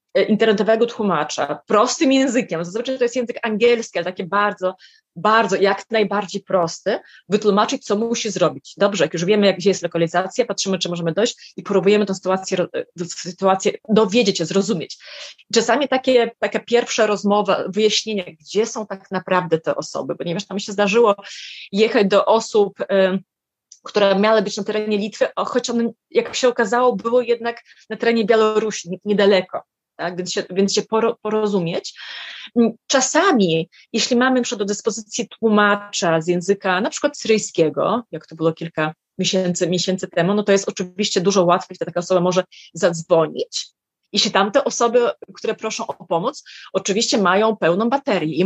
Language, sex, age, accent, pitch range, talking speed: Polish, female, 20-39, native, 185-235 Hz, 150 wpm